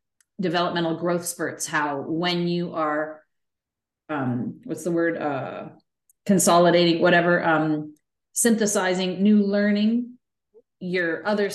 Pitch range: 160-195 Hz